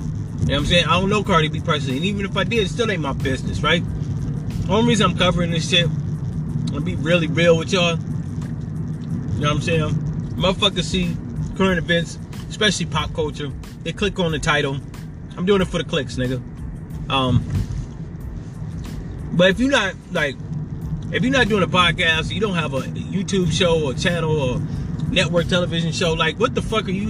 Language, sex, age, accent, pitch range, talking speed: English, male, 30-49, American, 155-190 Hz, 200 wpm